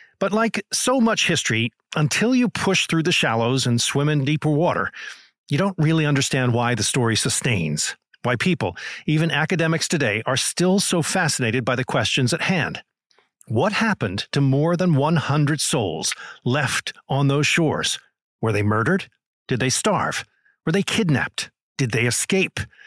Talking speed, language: 160 wpm, English